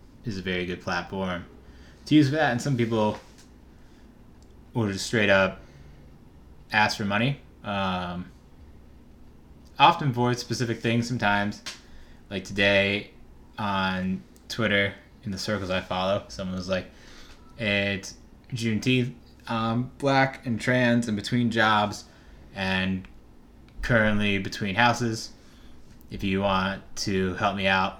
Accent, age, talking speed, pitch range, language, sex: American, 20-39, 120 wpm, 95-115 Hz, English, male